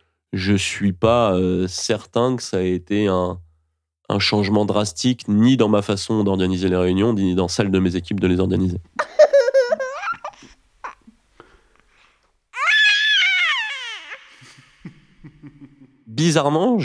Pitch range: 90-115 Hz